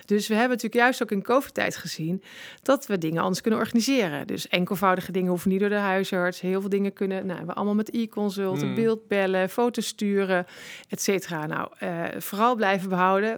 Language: Dutch